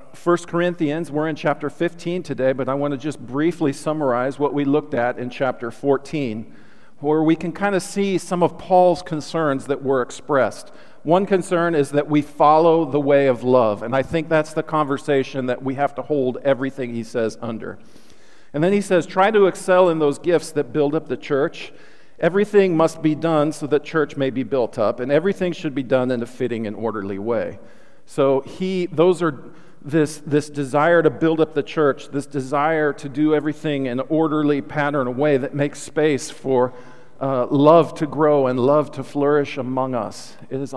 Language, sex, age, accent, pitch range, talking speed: English, male, 50-69, American, 125-155 Hz, 200 wpm